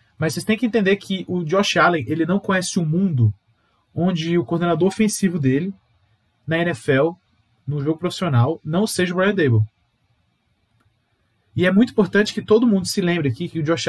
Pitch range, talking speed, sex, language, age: 120-195 Hz, 180 wpm, male, Portuguese, 20-39